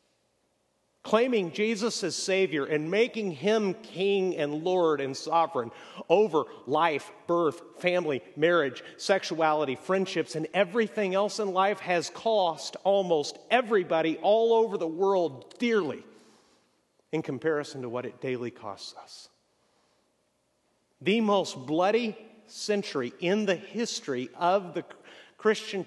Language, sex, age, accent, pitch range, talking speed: English, male, 50-69, American, 130-195 Hz, 120 wpm